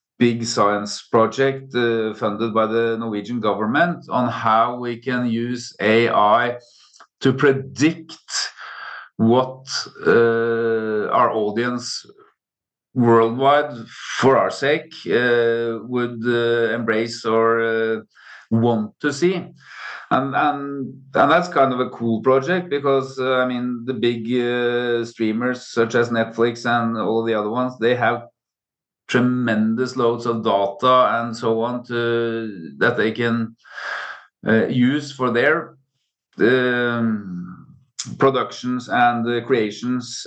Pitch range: 115-125 Hz